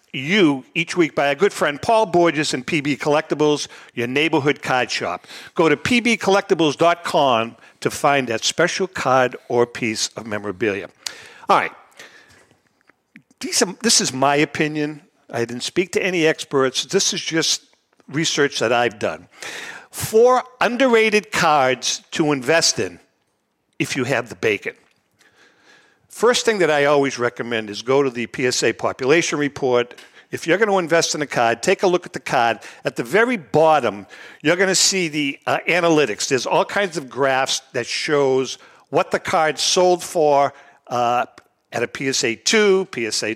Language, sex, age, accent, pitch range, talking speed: English, male, 50-69, American, 130-190 Hz, 155 wpm